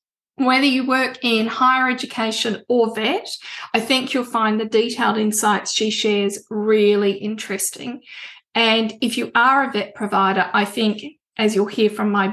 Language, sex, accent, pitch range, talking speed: English, female, Australian, 210-245 Hz, 160 wpm